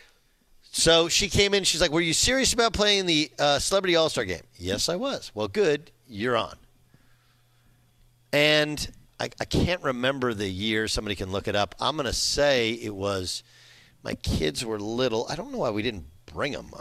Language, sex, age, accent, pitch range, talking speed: English, male, 50-69, American, 120-160 Hz, 190 wpm